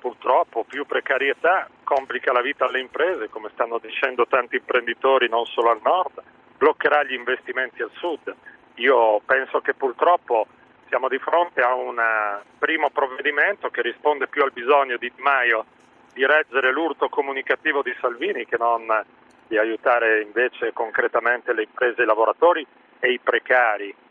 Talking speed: 145 wpm